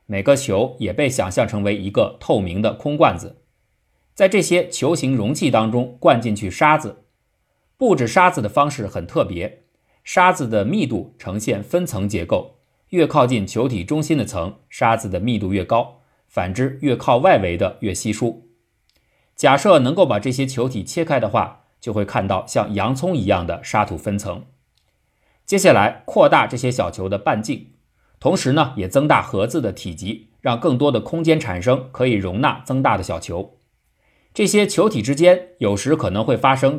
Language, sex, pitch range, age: Chinese, male, 100-140 Hz, 50-69